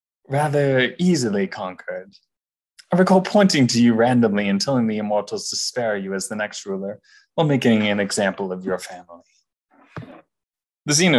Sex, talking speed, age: male, 150 wpm, 20-39